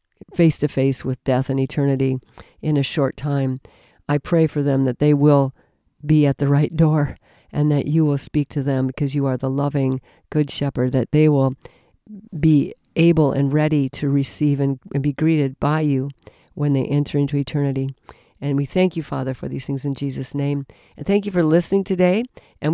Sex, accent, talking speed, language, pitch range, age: female, American, 195 wpm, English, 135-155 Hz, 50-69